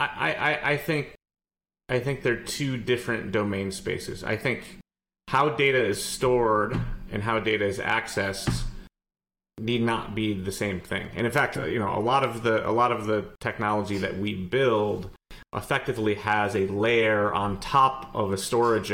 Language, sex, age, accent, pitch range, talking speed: English, male, 30-49, American, 95-110 Hz, 170 wpm